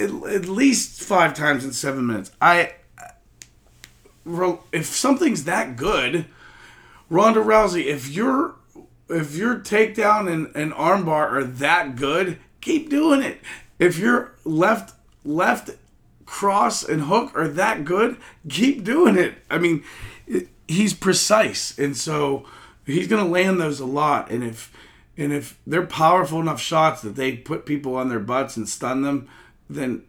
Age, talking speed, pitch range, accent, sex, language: 40-59, 145 wpm, 125-180 Hz, American, male, English